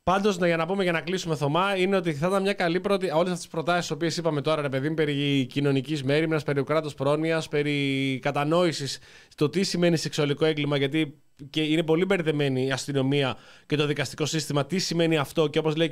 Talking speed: 195 wpm